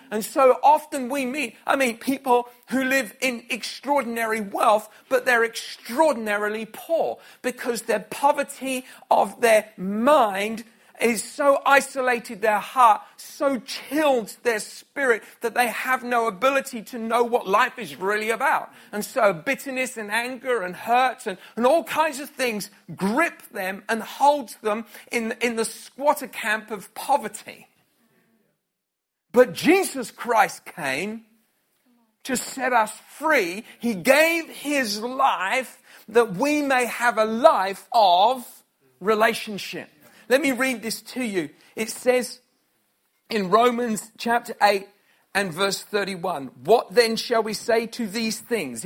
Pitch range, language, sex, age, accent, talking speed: 215-260 Hz, English, male, 40-59, British, 140 wpm